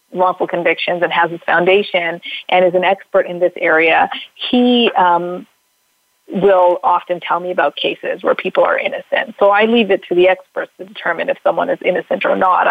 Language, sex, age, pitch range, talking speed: English, female, 30-49, 180-205 Hz, 190 wpm